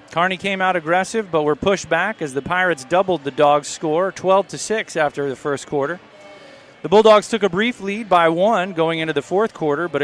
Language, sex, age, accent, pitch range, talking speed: English, male, 30-49, American, 160-195 Hz, 205 wpm